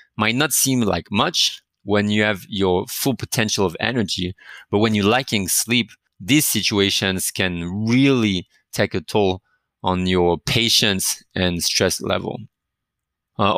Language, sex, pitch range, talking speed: English, male, 100-125 Hz, 140 wpm